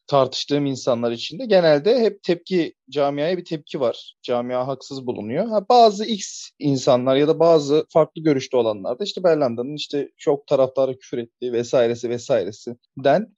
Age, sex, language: 30-49, male, Turkish